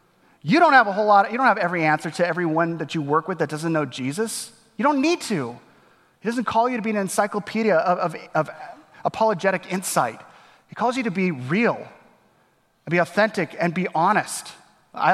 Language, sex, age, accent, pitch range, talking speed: English, male, 30-49, American, 145-200 Hz, 200 wpm